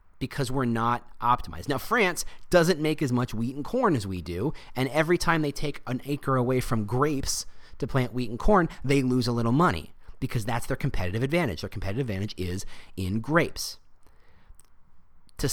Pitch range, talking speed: 105-150 Hz, 185 wpm